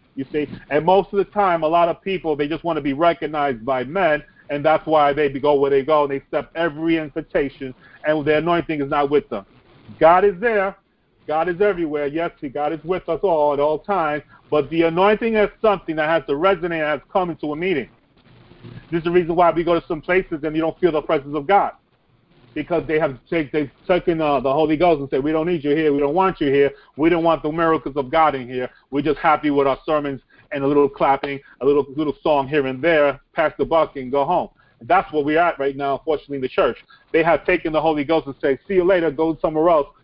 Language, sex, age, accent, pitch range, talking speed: English, male, 40-59, American, 140-170 Hz, 245 wpm